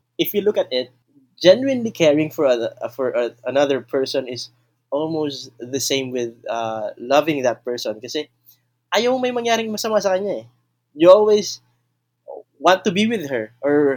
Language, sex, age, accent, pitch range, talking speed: Filipino, male, 20-39, native, 115-135 Hz, 160 wpm